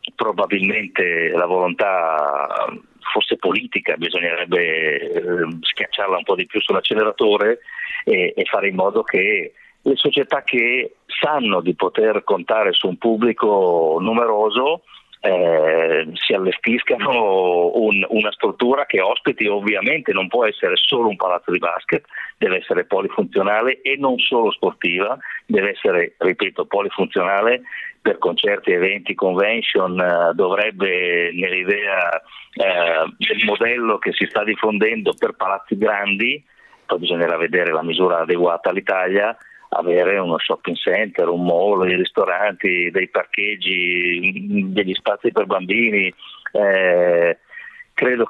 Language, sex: Italian, male